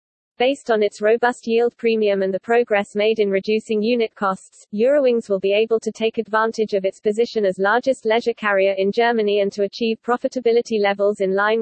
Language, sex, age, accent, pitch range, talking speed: English, female, 40-59, British, 200-235 Hz, 190 wpm